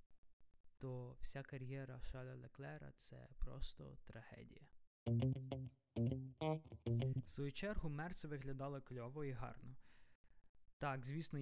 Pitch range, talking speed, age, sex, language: 120-140 Hz, 95 wpm, 20-39, male, Ukrainian